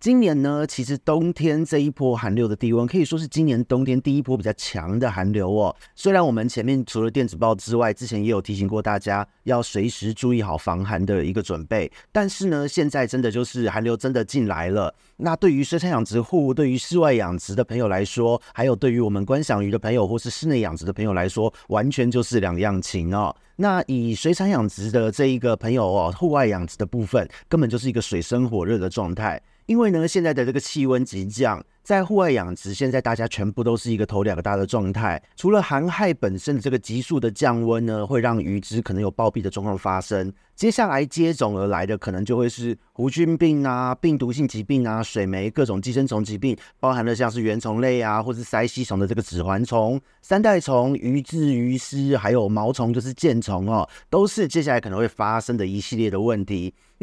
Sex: male